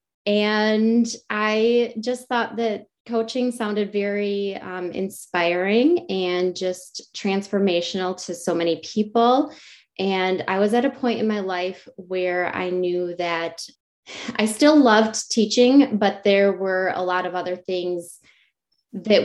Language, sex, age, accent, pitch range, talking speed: English, female, 20-39, American, 180-225 Hz, 135 wpm